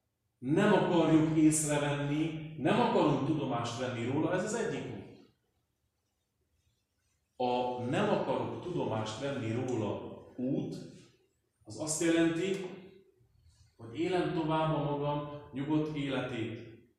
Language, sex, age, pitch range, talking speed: Hungarian, male, 40-59, 110-155 Hz, 100 wpm